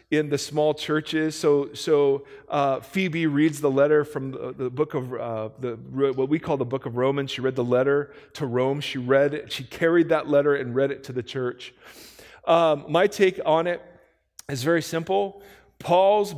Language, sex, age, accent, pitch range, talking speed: English, male, 40-59, American, 130-160 Hz, 190 wpm